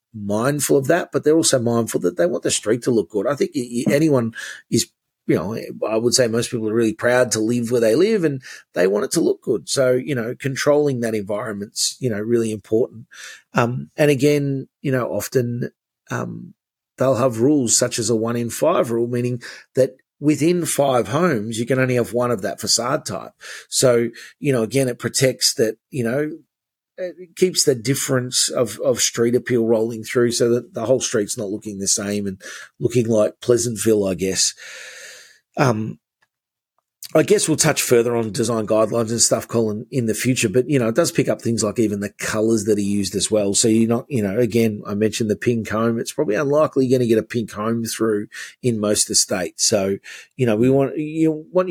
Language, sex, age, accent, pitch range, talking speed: English, male, 30-49, Australian, 110-135 Hz, 210 wpm